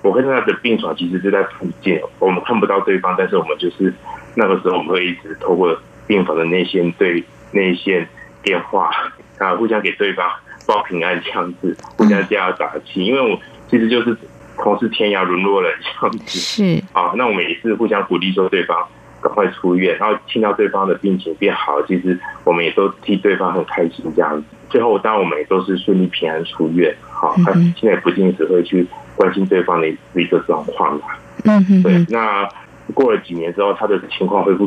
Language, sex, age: Chinese, male, 20-39